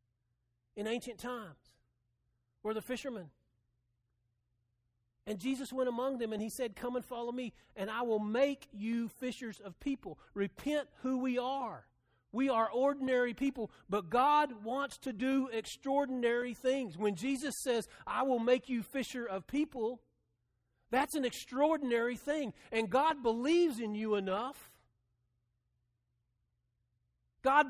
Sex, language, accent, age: male, English, American, 40-59